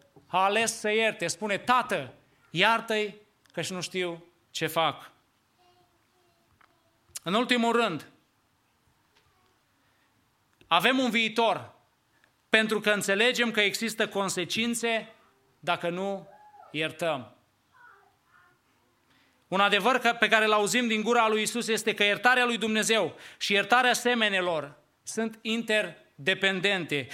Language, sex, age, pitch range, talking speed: English, male, 30-49, 190-235 Hz, 105 wpm